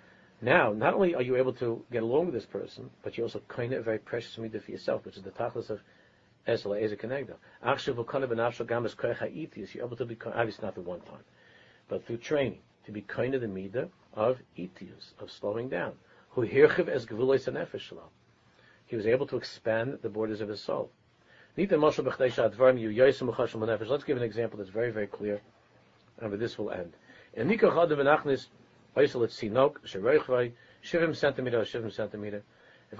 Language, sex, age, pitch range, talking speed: English, male, 50-69, 110-135 Hz, 145 wpm